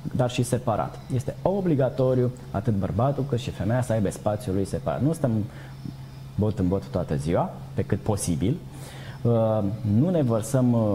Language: Romanian